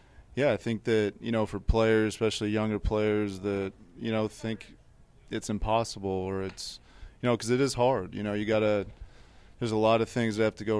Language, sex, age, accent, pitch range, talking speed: English, male, 30-49, American, 100-110 Hz, 215 wpm